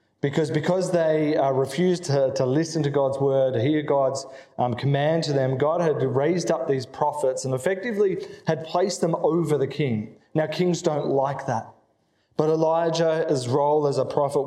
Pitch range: 135-165 Hz